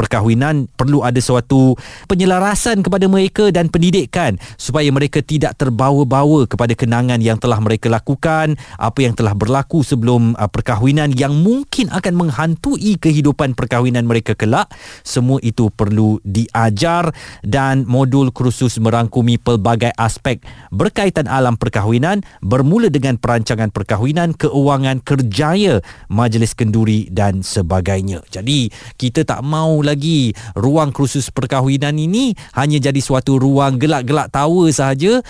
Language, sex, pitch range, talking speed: Malay, male, 115-150 Hz, 120 wpm